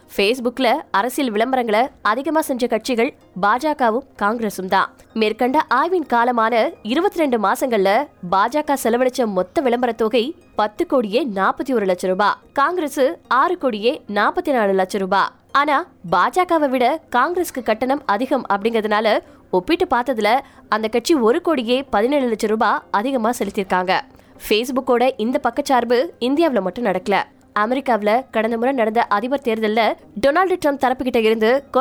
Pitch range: 215-280 Hz